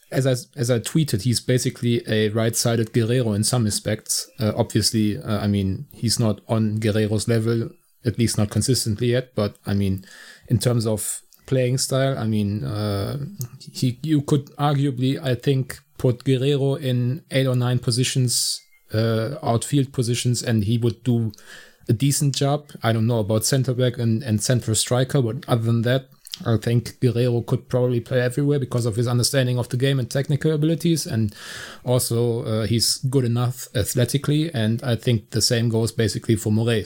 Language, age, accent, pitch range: English, 30-49, German, 115-135 Hz